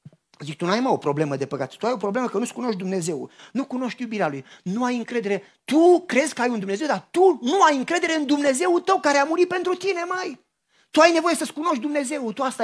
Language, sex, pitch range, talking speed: Romanian, male, 180-260 Hz, 245 wpm